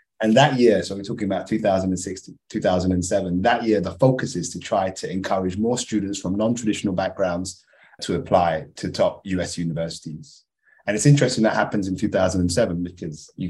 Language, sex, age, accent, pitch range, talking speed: English, male, 20-39, British, 85-100 Hz, 170 wpm